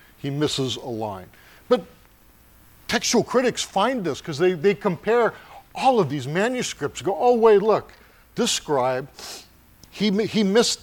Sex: male